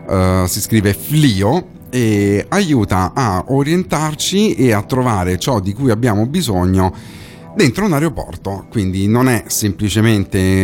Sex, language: male, Italian